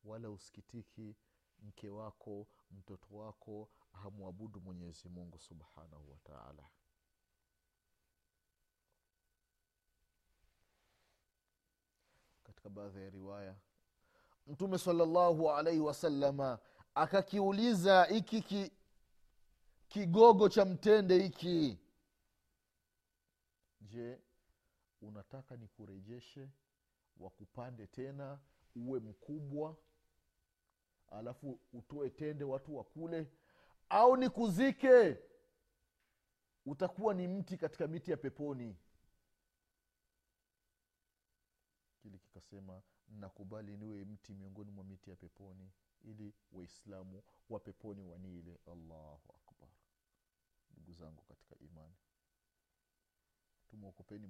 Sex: male